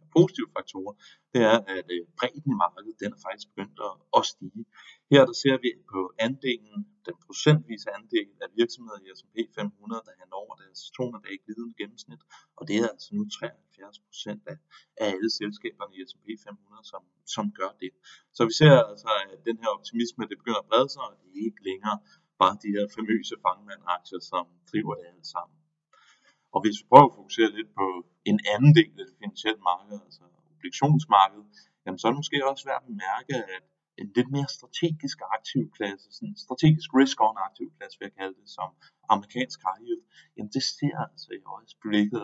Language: Danish